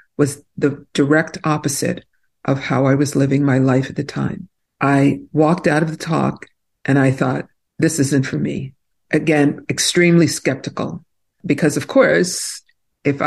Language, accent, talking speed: English, American, 155 wpm